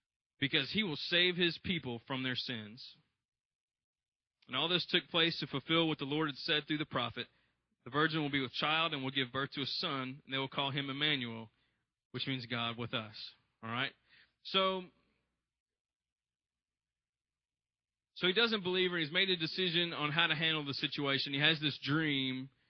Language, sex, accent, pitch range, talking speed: English, male, American, 130-160 Hz, 185 wpm